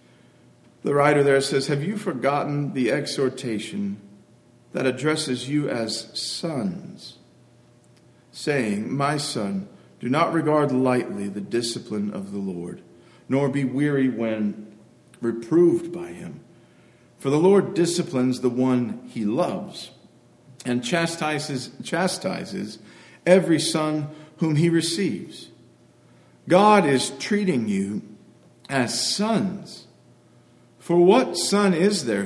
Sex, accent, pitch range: male, American, 130-185 Hz